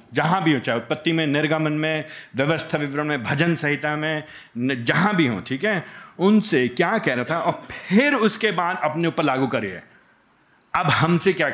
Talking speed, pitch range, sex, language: 185 wpm, 135-185 Hz, male, Hindi